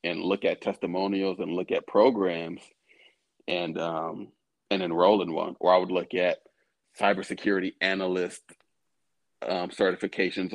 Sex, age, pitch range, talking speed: male, 40-59, 90-110 Hz, 130 wpm